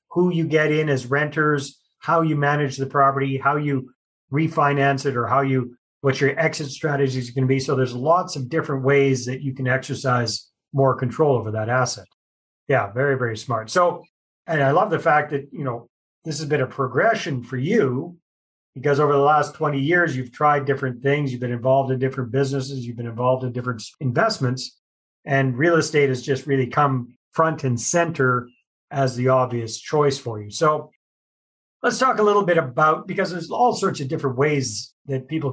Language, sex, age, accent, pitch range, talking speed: English, male, 40-59, American, 125-150 Hz, 195 wpm